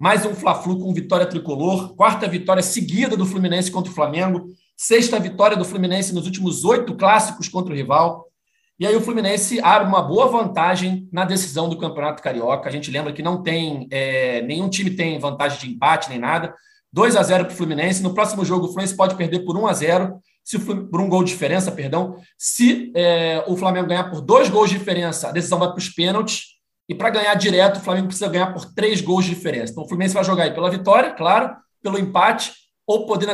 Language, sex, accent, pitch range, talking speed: Portuguese, male, Brazilian, 175-205 Hz, 215 wpm